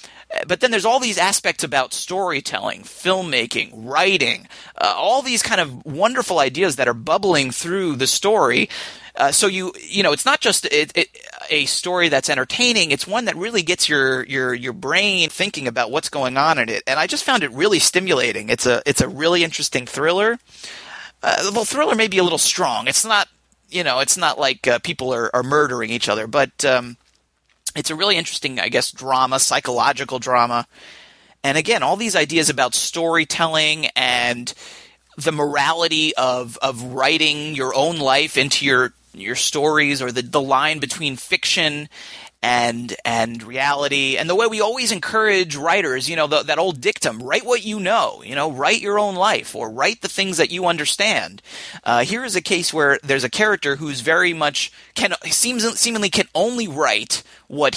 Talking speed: 185 wpm